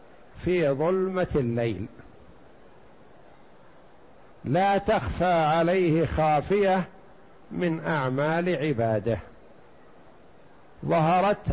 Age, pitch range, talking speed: 60-79, 130-175 Hz, 55 wpm